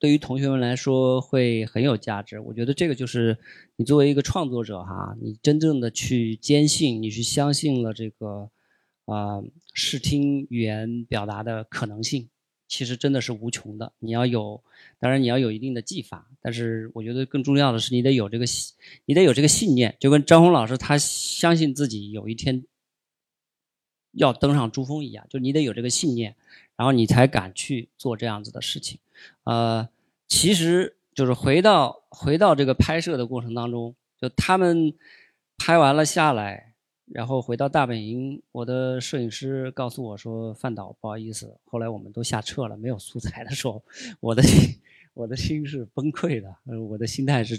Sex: male